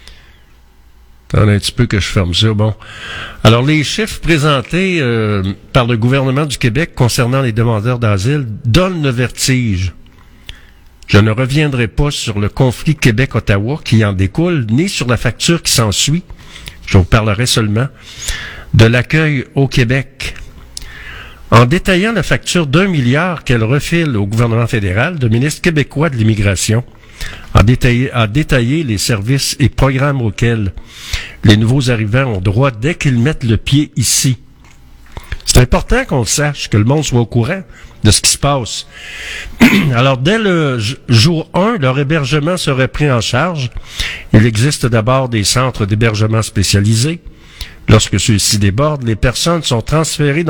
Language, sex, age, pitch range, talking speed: French, male, 60-79, 110-145 Hz, 150 wpm